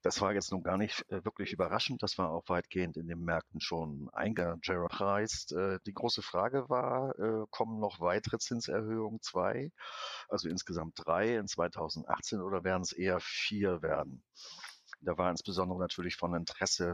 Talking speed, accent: 150 wpm, German